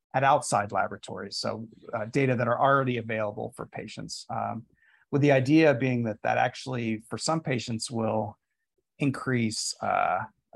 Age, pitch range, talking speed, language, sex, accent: 30-49, 110-130 Hz, 150 wpm, English, male, American